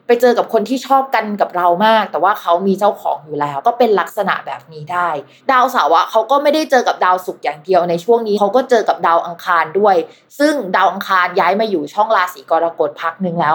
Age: 20-39